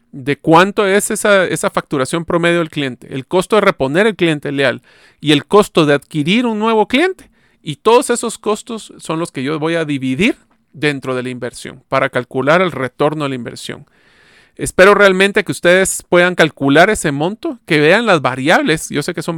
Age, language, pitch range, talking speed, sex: 40-59, Spanish, 140-195 Hz, 190 wpm, male